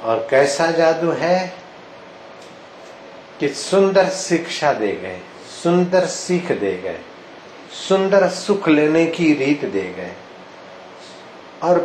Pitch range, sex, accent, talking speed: 130-185 Hz, male, native, 105 wpm